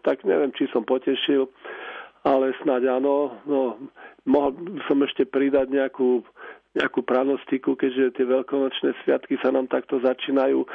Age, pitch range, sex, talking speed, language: 40-59, 125-135 Hz, male, 140 wpm, Slovak